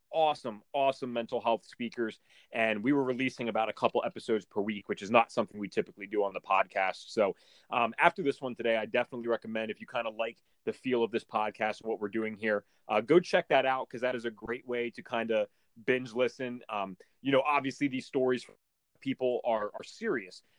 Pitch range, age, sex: 115-150 Hz, 30-49, male